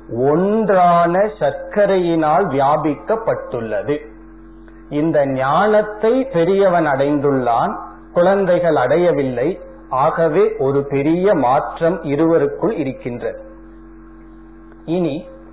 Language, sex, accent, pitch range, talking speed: Tamil, male, native, 130-185 Hz, 45 wpm